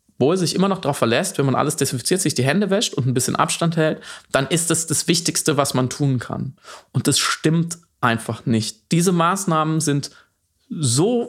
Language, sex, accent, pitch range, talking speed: German, male, German, 130-170 Hz, 195 wpm